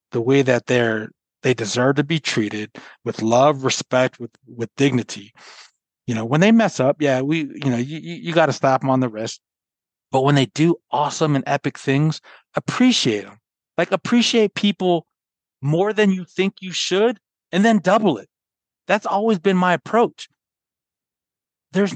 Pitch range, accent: 120-180 Hz, American